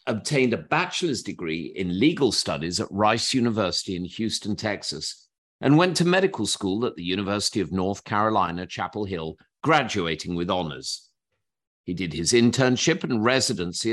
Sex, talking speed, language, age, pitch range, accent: male, 150 wpm, English, 50-69, 95-130 Hz, British